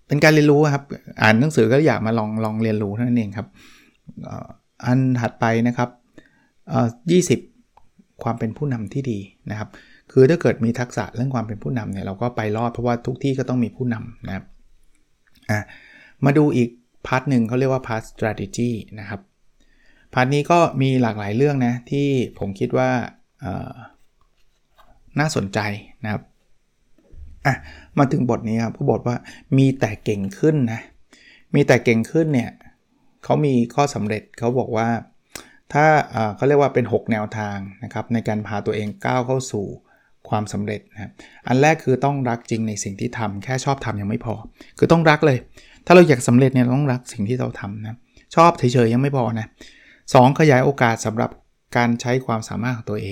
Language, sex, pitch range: Thai, male, 110-130 Hz